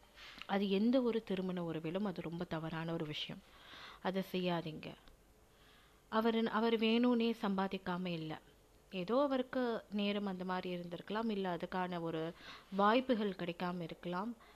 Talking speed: 120 wpm